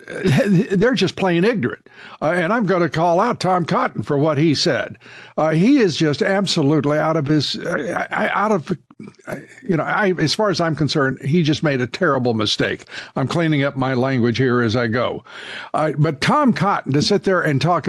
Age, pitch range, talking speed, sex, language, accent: 60-79, 155-210 Hz, 210 wpm, male, English, American